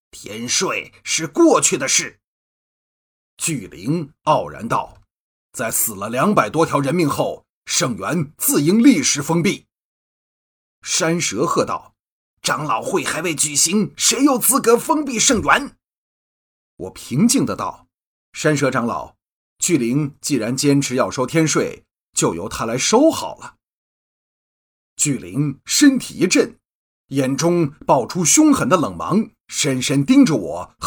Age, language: 30-49, Chinese